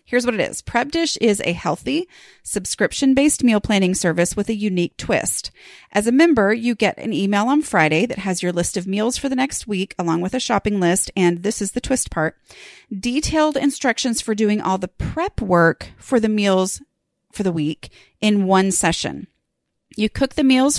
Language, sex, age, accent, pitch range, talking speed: English, female, 30-49, American, 185-255 Hz, 200 wpm